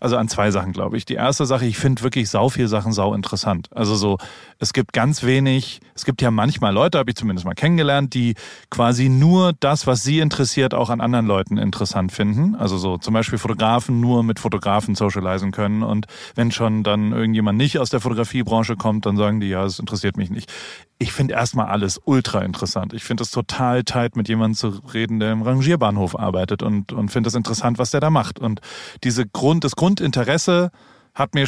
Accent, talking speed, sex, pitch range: German, 210 wpm, male, 110-150 Hz